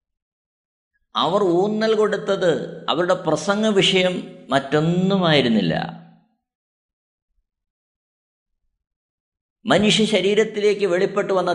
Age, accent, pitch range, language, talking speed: 50-69, native, 145-210 Hz, Malayalam, 55 wpm